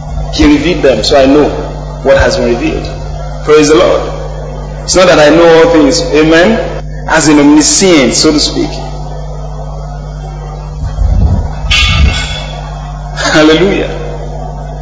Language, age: English, 40-59